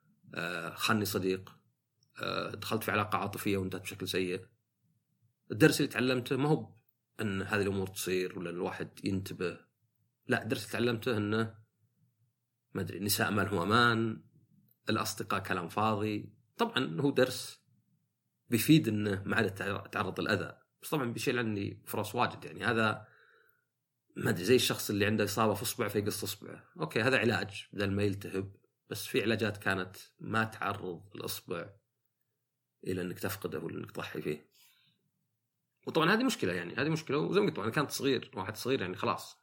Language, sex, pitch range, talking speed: Arabic, male, 100-120 Hz, 155 wpm